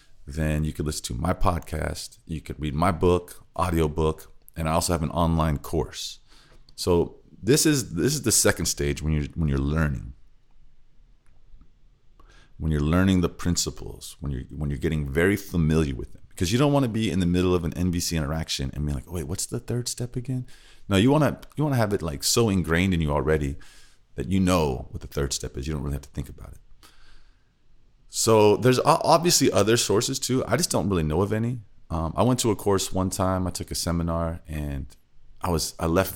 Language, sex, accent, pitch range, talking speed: English, male, American, 80-105 Hz, 220 wpm